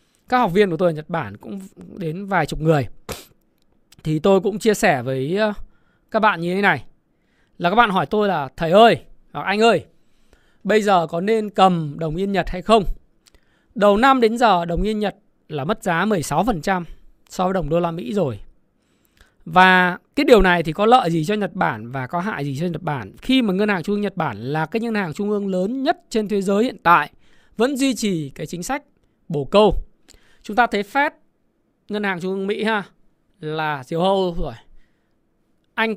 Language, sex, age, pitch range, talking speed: Vietnamese, male, 20-39, 175-215 Hz, 205 wpm